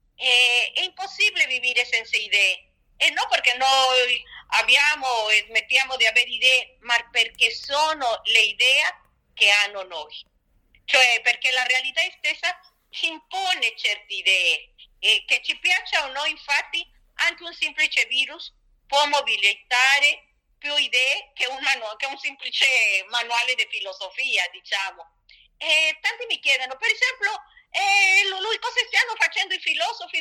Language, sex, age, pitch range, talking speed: Italian, female, 40-59, 245-320 Hz, 140 wpm